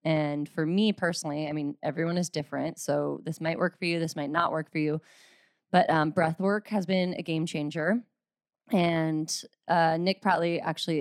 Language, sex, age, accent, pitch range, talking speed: English, female, 20-39, American, 155-175 Hz, 185 wpm